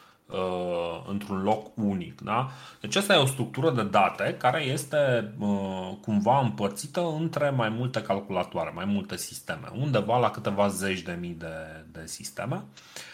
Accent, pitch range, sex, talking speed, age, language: native, 100-135 Hz, male, 145 wpm, 30-49, Romanian